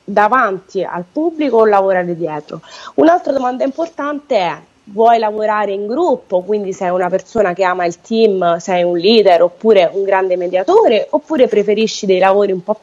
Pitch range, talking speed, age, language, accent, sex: 175-220 Hz, 165 wpm, 20-39, Italian, native, female